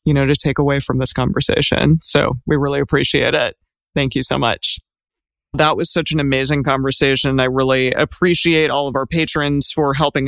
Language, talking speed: English, 185 wpm